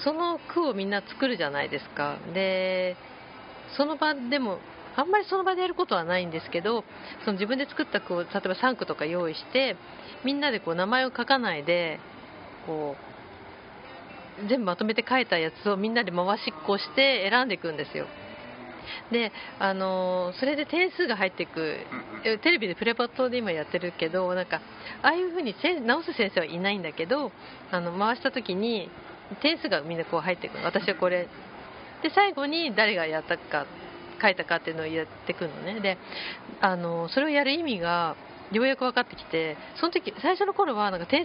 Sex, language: female, Japanese